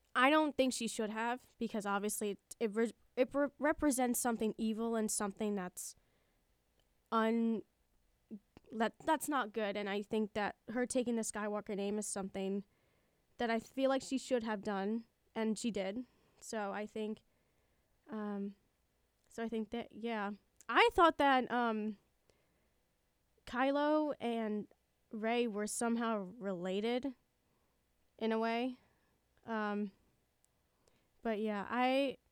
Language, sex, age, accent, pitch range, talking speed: English, female, 10-29, American, 210-265 Hz, 135 wpm